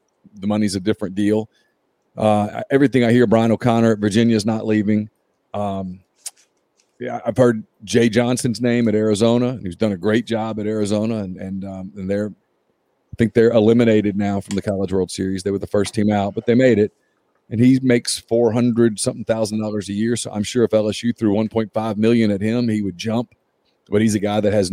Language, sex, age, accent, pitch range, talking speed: English, male, 40-59, American, 105-120 Hz, 215 wpm